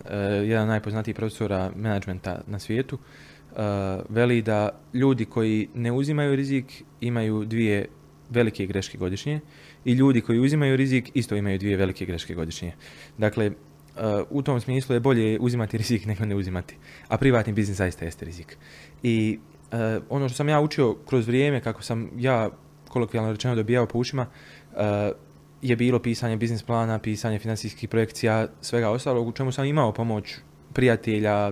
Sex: male